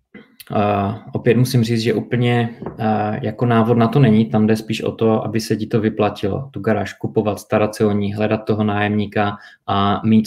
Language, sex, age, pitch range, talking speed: Czech, male, 20-39, 105-115 Hz, 185 wpm